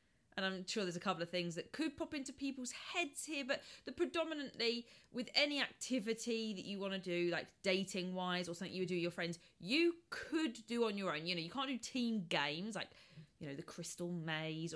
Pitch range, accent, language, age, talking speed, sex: 170-235 Hz, British, English, 20-39, 230 wpm, female